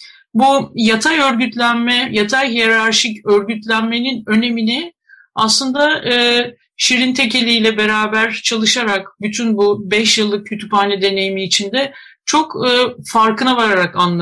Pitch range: 215-265 Hz